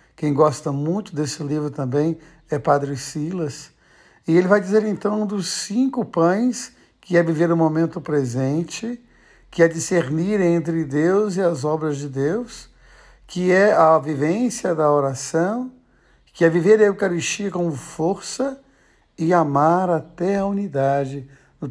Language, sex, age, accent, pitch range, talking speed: Portuguese, male, 60-79, Brazilian, 145-175 Hz, 145 wpm